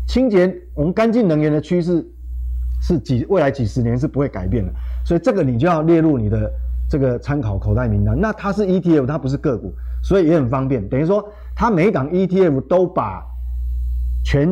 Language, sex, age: Chinese, male, 30-49